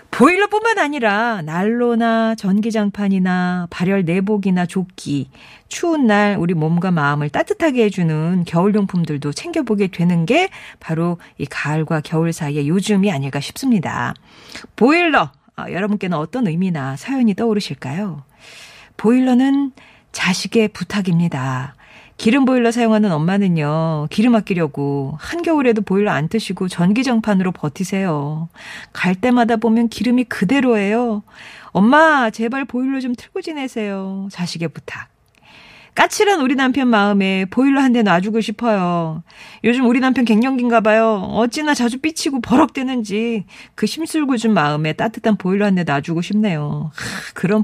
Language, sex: Korean, female